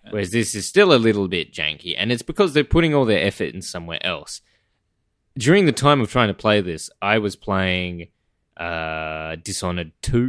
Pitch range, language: 90-115 Hz, English